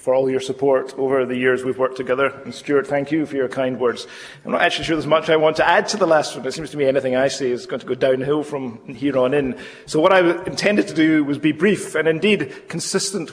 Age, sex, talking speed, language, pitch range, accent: 40-59, male, 275 wpm, English, 130-160 Hz, British